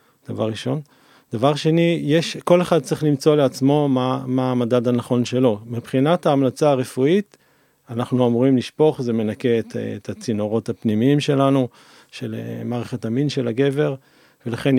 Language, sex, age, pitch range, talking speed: Hebrew, male, 40-59, 120-155 Hz, 140 wpm